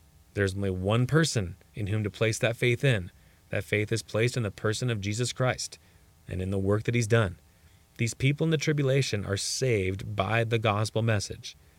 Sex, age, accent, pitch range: male, 30-49, American, 90-120 Hz